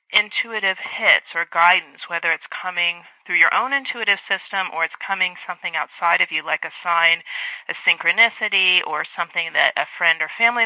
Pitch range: 175-240 Hz